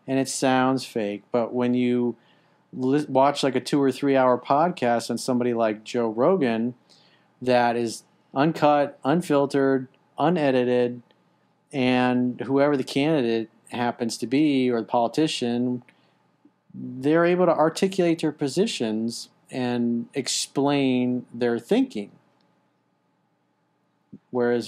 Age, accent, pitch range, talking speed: 40-59, American, 115-140 Hz, 110 wpm